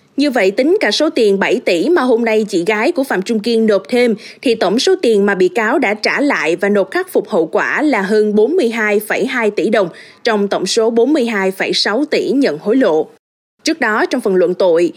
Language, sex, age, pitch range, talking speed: Vietnamese, female, 20-39, 210-315 Hz, 215 wpm